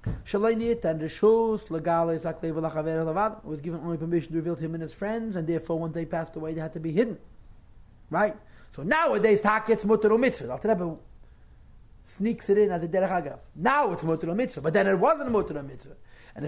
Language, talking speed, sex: English, 170 wpm, male